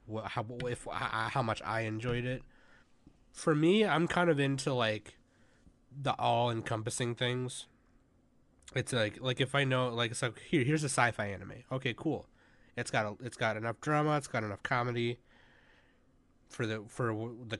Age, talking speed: 20-39, 160 wpm